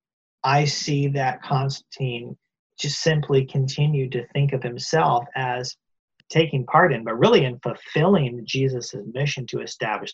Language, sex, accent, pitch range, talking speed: English, male, American, 125-160 Hz, 135 wpm